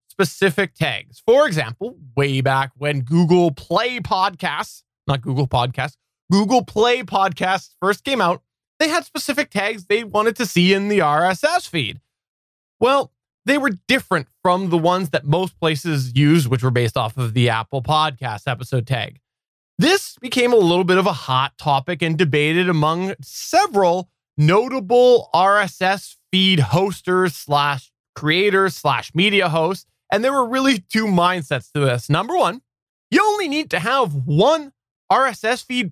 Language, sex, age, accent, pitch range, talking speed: English, male, 20-39, American, 150-220 Hz, 155 wpm